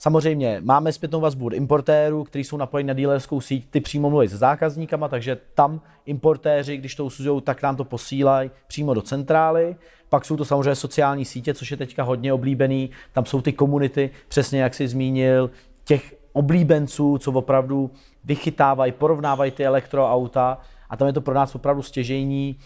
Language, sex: Czech, male